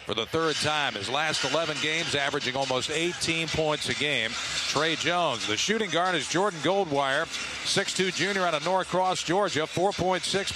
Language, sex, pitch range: English, male, 150-185 Hz